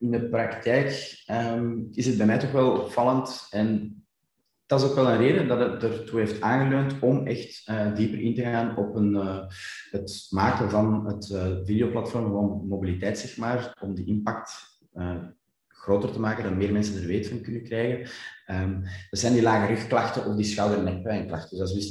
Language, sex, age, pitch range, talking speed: Dutch, male, 20-39, 100-120 Hz, 195 wpm